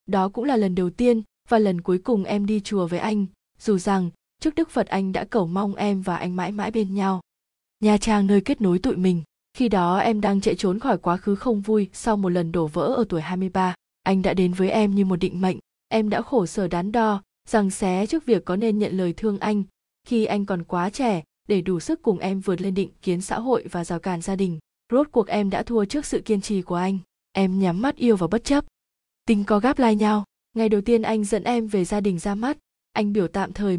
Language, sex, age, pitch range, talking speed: Vietnamese, female, 20-39, 185-220 Hz, 250 wpm